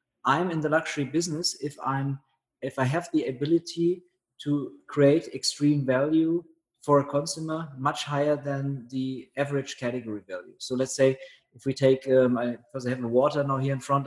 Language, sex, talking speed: English, male, 175 wpm